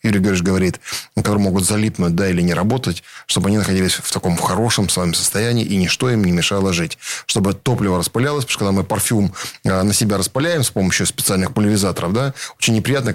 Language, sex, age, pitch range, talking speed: Russian, male, 10-29, 95-110 Hz, 190 wpm